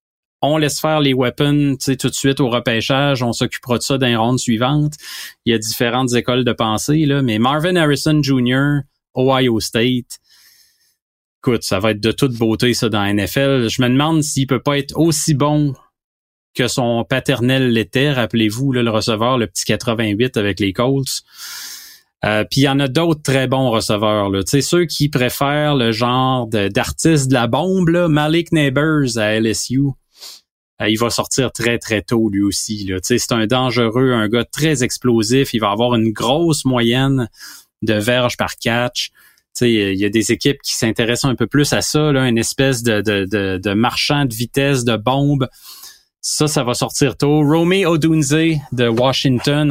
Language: French